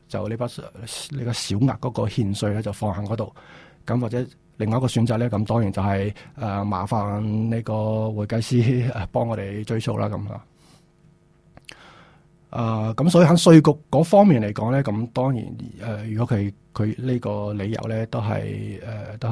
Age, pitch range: 20-39, 105-130 Hz